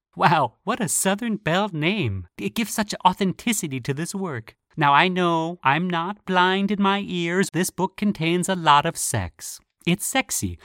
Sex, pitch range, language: male, 125-200 Hz, English